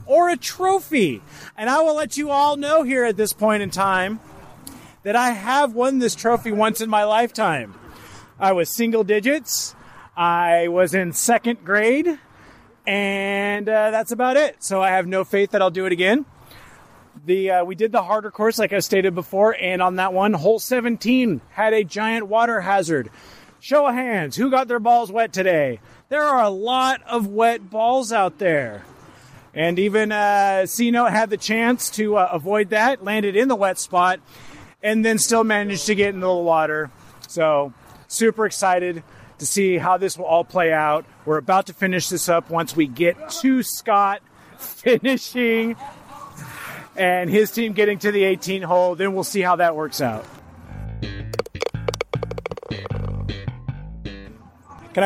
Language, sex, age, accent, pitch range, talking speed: English, male, 30-49, American, 180-230 Hz, 170 wpm